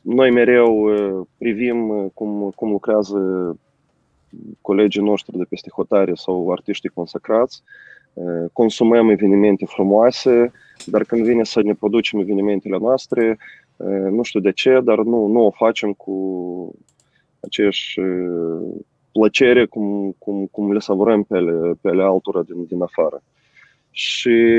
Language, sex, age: Romanian, male, 20-39